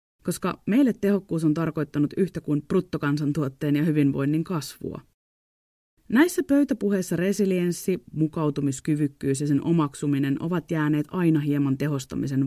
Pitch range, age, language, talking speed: 145-180 Hz, 30-49, Finnish, 110 wpm